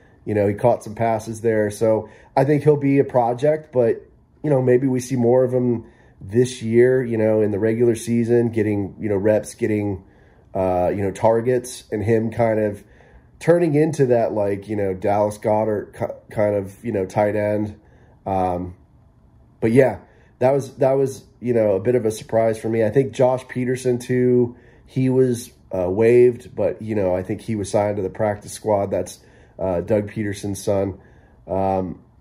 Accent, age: American, 30-49